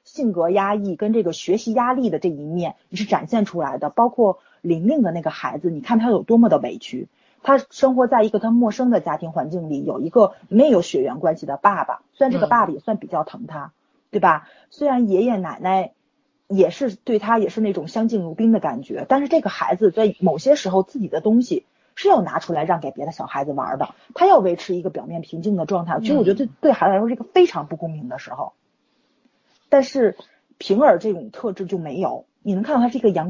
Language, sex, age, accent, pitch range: Chinese, female, 30-49, native, 180-245 Hz